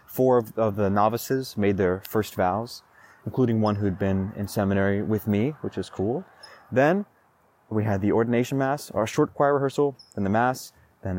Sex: male